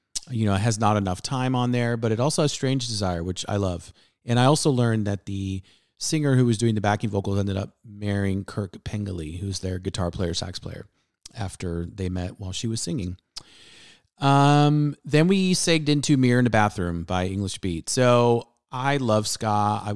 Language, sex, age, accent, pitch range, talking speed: English, male, 30-49, American, 100-120 Hz, 200 wpm